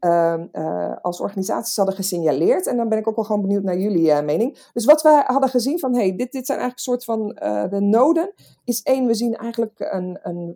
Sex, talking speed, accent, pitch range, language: female, 245 wpm, Dutch, 170-235 Hz, Dutch